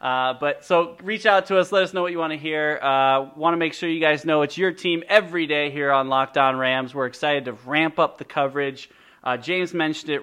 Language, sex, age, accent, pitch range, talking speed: English, male, 20-39, American, 130-160 Hz, 260 wpm